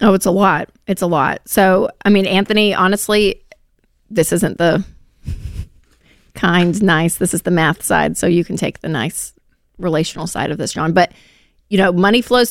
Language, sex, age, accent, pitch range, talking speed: English, female, 30-49, American, 170-205 Hz, 180 wpm